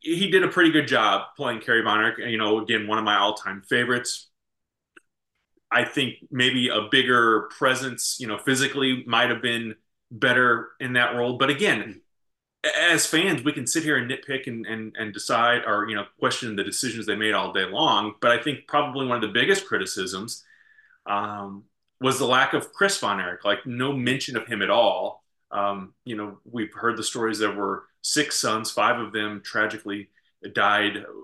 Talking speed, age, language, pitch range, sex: 190 wpm, 30-49, English, 105-145 Hz, male